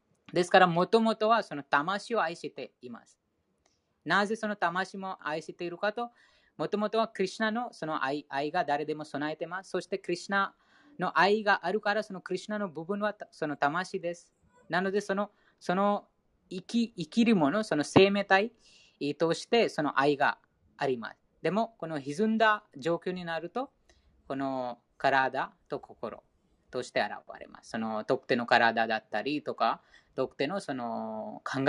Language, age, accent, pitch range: Japanese, 20-39, Indian, 130-200 Hz